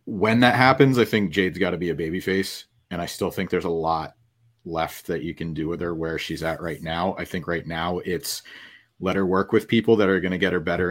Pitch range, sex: 90-115 Hz, male